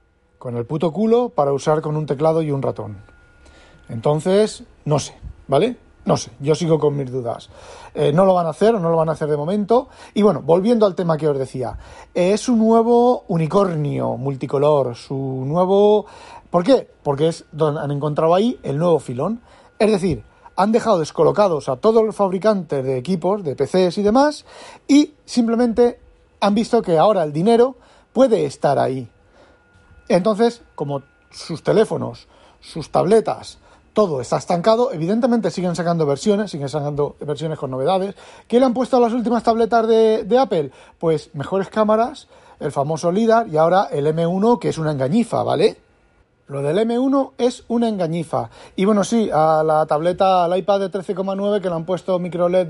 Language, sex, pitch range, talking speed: Spanish, male, 145-215 Hz, 180 wpm